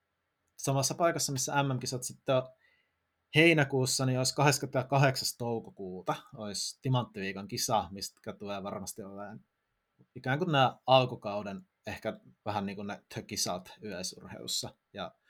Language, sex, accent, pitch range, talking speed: Finnish, male, native, 105-140 Hz, 115 wpm